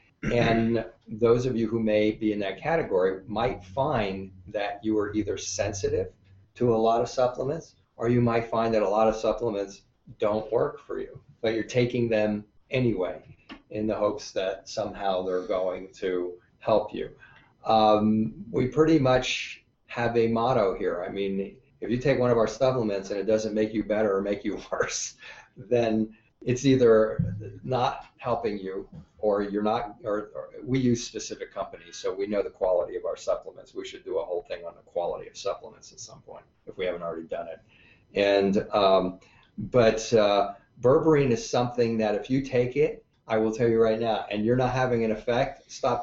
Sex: male